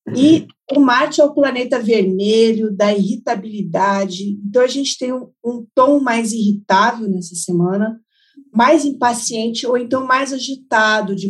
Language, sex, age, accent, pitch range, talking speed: Portuguese, female, 50-69, Brazilian, 205-270 Hz, 145 wpm